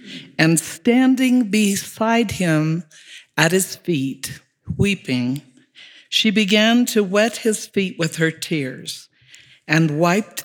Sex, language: female, English